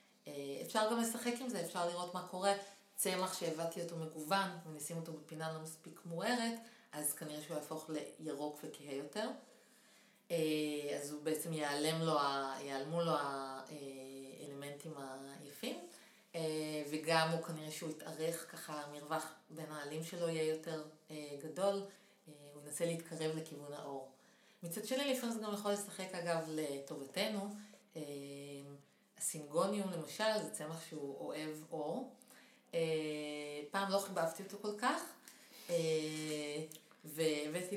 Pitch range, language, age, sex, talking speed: 155-195 Hz, Hebrew, 30-49, female, 120 wpm